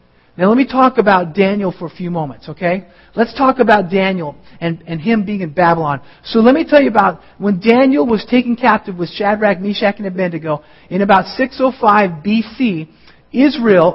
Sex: male